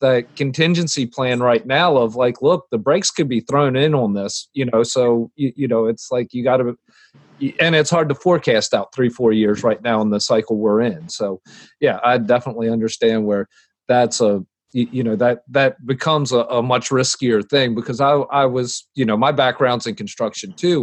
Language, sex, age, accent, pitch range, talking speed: English, male, 40-59, American, 115-140 Hz, 205 wpm